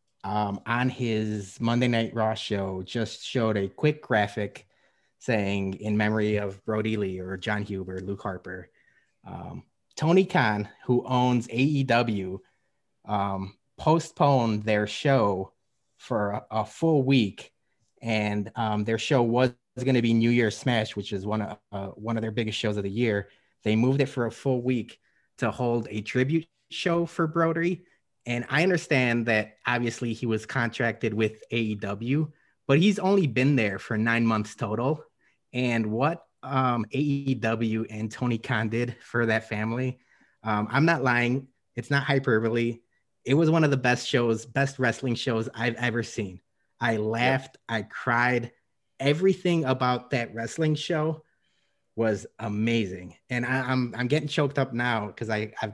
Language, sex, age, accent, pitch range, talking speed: English, male, 30-49, American, 110-130 Hz, 160 wpm